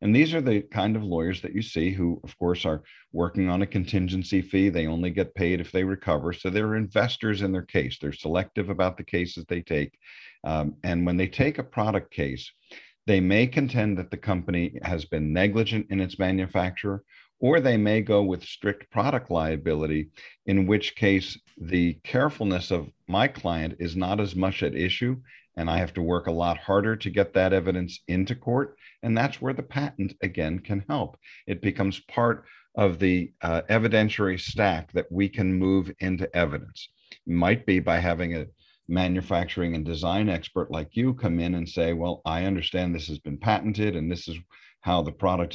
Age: 50-69